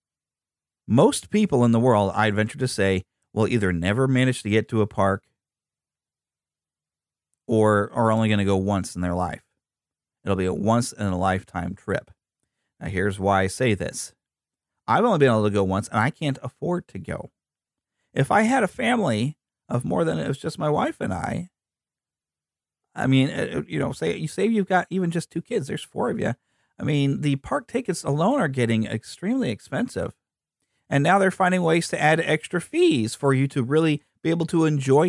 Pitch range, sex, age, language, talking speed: 105-165 Hz, male, 40-59, English, 190 wpm